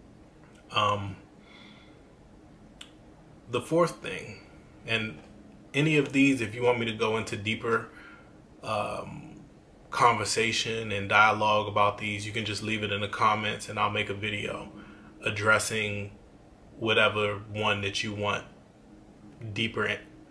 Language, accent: English, American